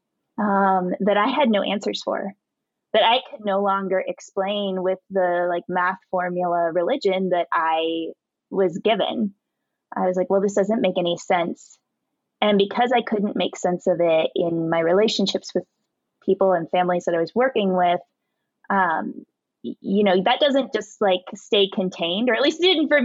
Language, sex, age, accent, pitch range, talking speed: English, female, 20-39, American, 180-225 Hz, 175 wpm